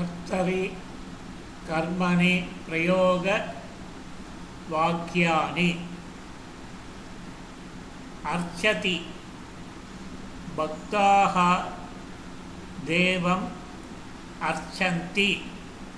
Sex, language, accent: male, Tamil, native